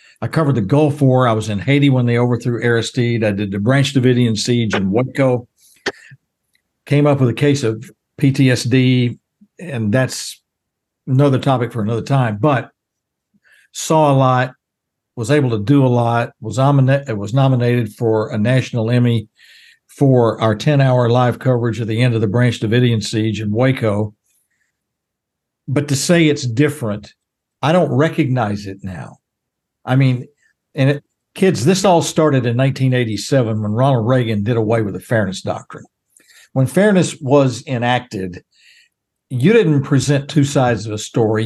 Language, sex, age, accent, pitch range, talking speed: English, male, 60-79, American, 115-145 Hz, 155 wpm